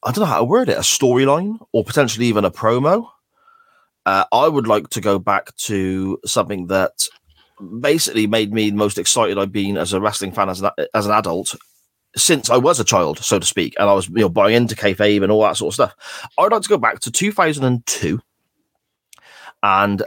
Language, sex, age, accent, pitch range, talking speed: English, male, 30-49, British, 95-120 Hz, 210 wpm